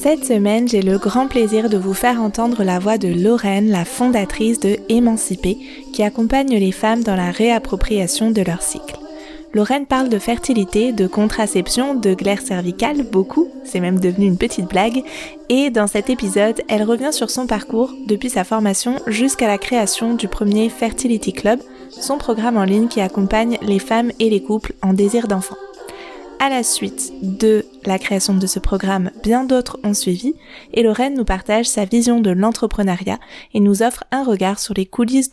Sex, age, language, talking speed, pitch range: female, 20-39, French, 180 wpm, 200-240 Hz